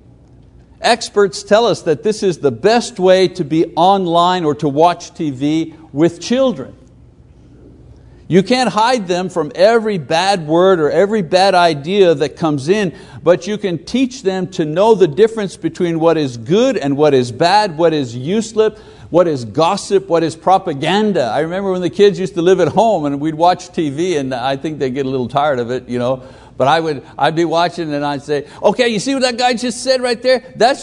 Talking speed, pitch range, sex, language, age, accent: 205 wpm, 155-210 Hz, male, English, 60-79, American